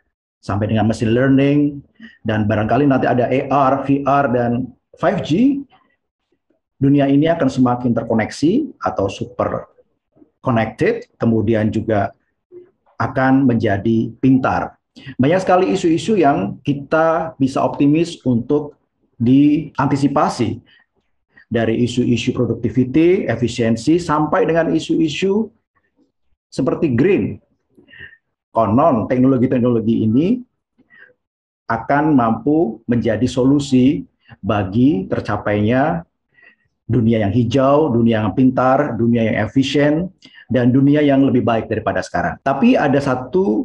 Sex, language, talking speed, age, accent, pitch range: male, Indonesian, 100 wpm, 50-69, native, 115-155 Hz